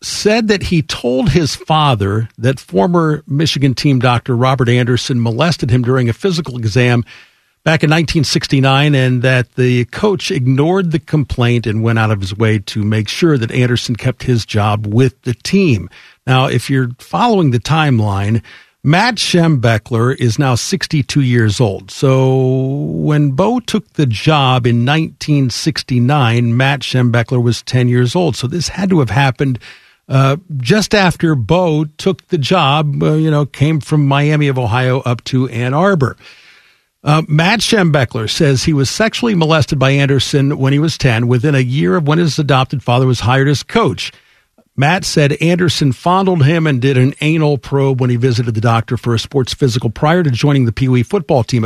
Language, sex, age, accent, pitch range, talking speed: English, male, 50-69, American, 125-160 Hz, 175 wpm